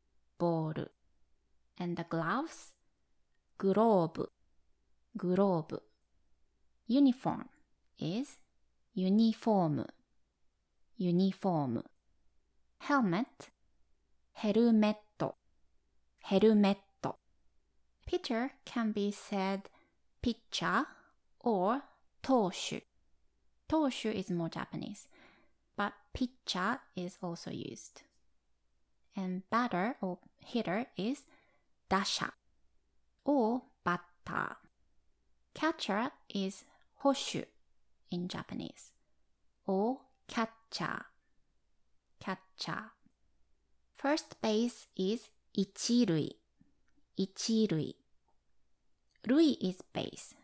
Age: 20-39